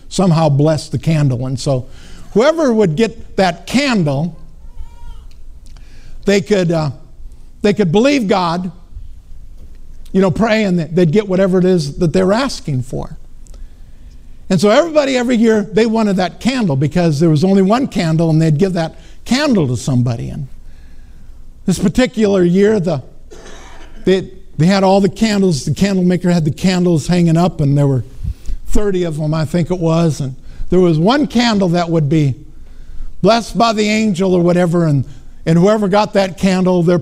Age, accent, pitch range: 50-69, American, 145-210 Hz